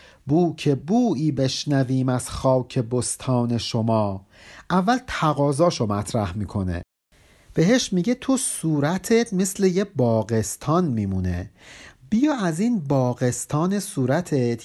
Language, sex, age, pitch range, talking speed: Persian, male, 50-69, 125-200 Hz, 100 wpm